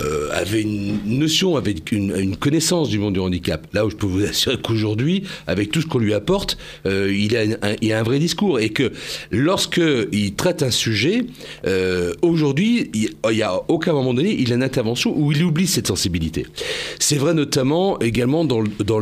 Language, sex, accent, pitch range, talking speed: French, male, French, 95-135 Hz, 195 wpm